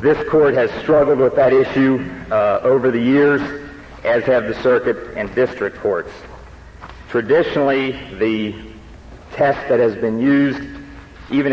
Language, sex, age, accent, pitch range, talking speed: English, male, 50-69, American, 110-135 Hz, 135 wpm